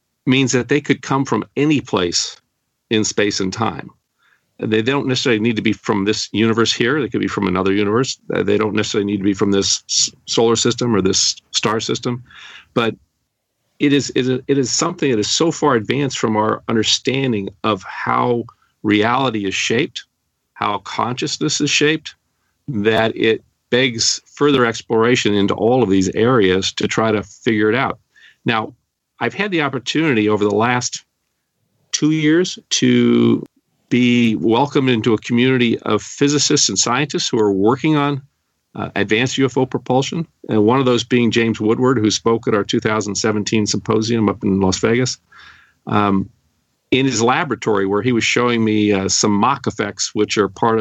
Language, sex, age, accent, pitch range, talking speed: English, male, 50-69, American, 105-130 Hz, 170 wpm